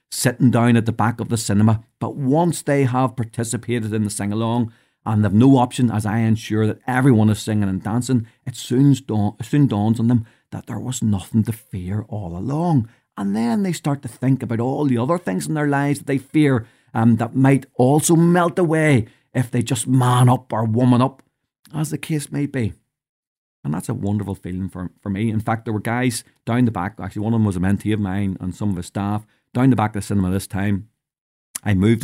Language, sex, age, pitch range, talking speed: English, male, 40-59, 105-125 Hz, 220 wpm